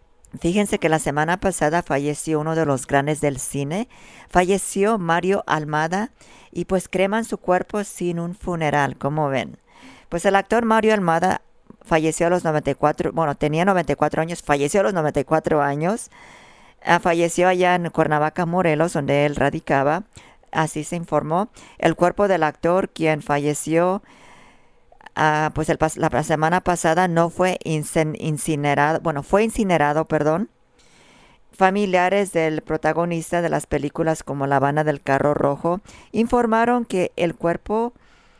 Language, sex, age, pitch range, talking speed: English, female, 40-59, 155-180 Hz, 140 wpm